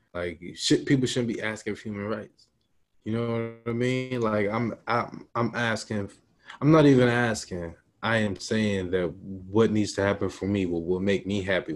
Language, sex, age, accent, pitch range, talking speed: English, male, 20-39, American, 95-110 Hz, 190 wpm